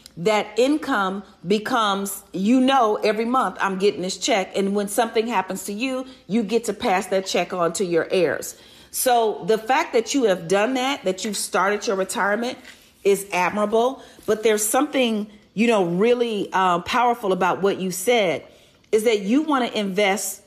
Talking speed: 175 wpm